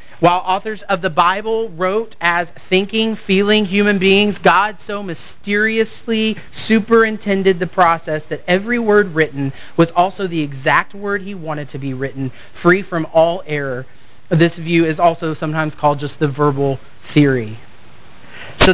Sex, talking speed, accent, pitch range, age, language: male, 145 wpm, American, 150-190 Hz, 30-49, English